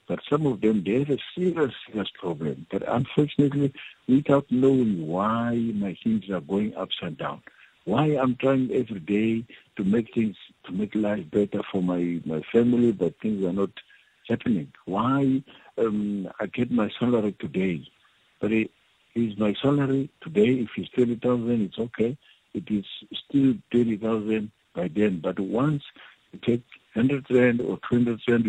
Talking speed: 155 wpm